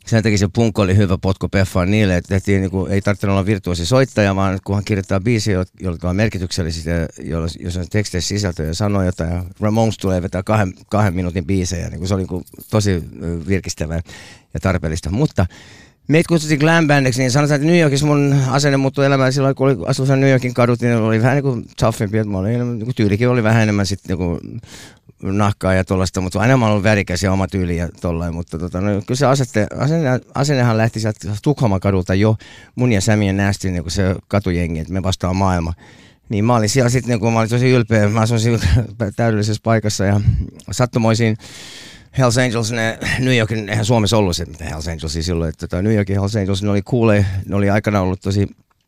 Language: Finnish